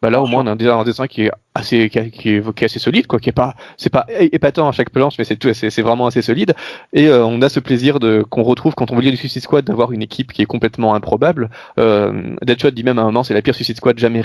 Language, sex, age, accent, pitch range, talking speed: French, male, 20-39, French, 115-140 Hz, 310 wpm